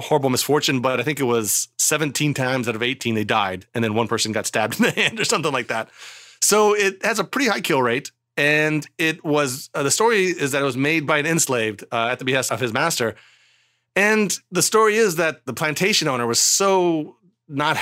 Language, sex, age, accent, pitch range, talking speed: English, male, 30-49, American, 130-170 Hz, 225 wpm